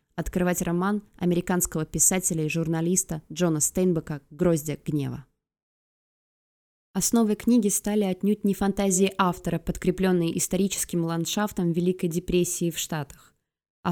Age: 20-39